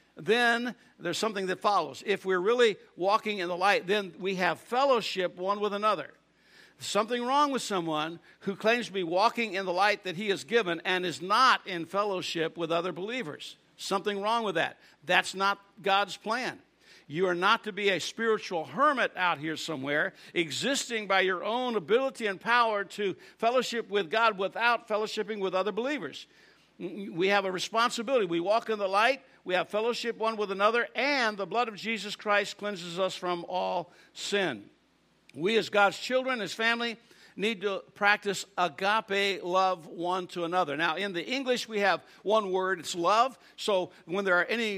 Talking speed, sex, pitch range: 180 wpm, male, 185-225 Hz